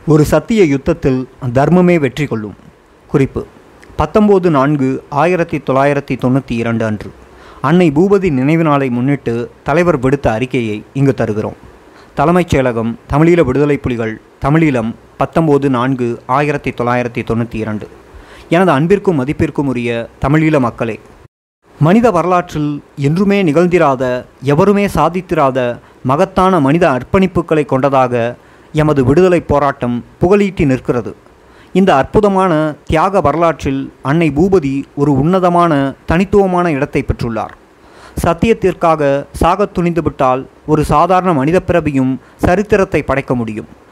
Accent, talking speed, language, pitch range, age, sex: native, 95 wpm, Tamil, 130-170 Hz, 30-49, male